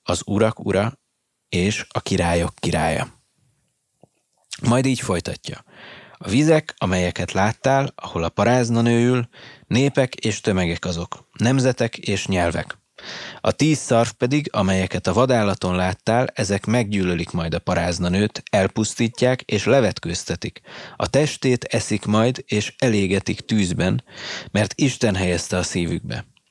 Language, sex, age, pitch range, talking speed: Hungarian, male, 30-49, 90-120 Hz, 120 wpm